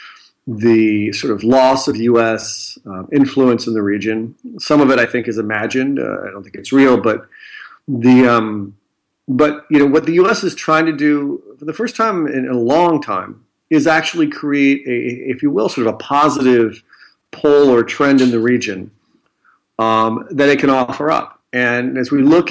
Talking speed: 190 wpm